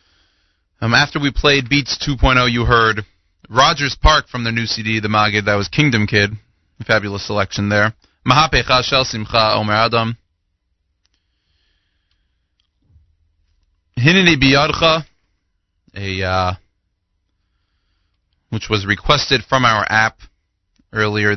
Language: English